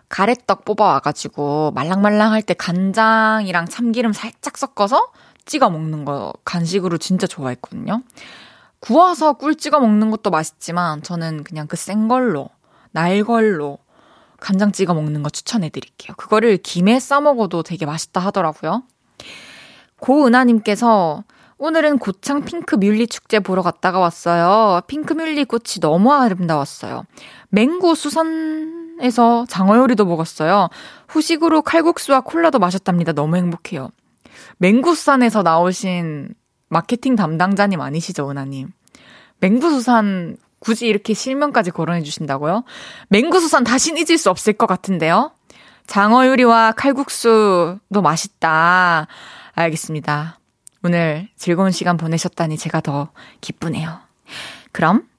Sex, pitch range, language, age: female, 170-250 Hz, Korean, 20-39